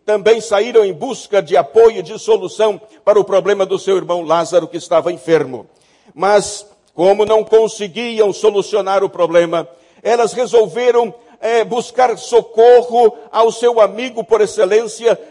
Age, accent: 60-79, Brazilian